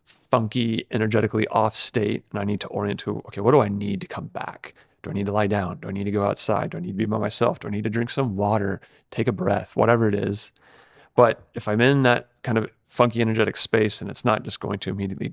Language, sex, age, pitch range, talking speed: English, male, 30-49, 105-120 Hz, 260 wpm